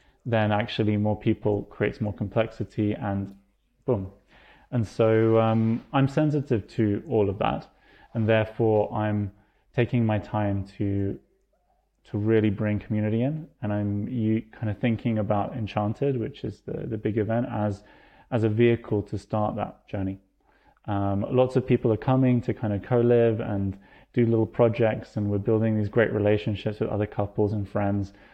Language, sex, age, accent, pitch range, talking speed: English, male, 20-39, British, 105-115 Hz, 160 wpm